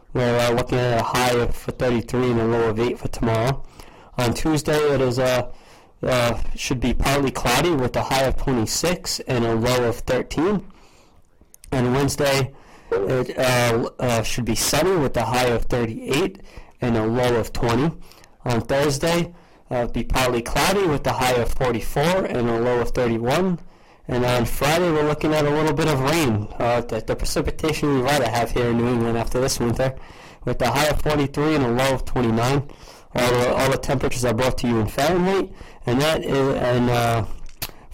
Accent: American